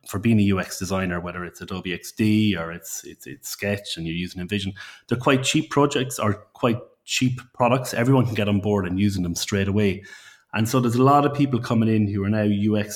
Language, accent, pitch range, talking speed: English, Irish, 100-120 Hz, 225 wpm